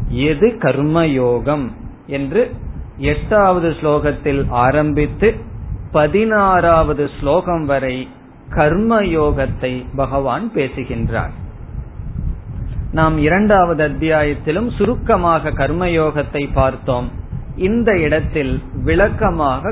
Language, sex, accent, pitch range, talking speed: Tamil, male, native, 135-180 Hz, 50 wpm